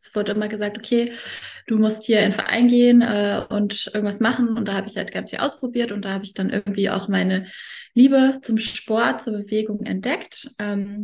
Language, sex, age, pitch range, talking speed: German, female, 20-39, 195-225 Hz, 210 wpm